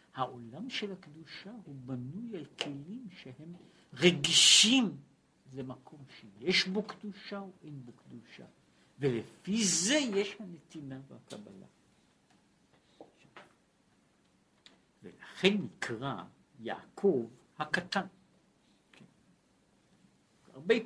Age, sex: 60-79, male